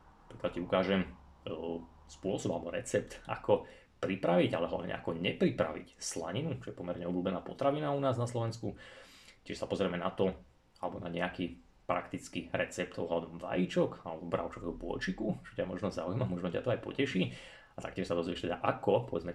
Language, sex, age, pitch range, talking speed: Slovak, male, 30-49, 85-110 Hz, 170 wpm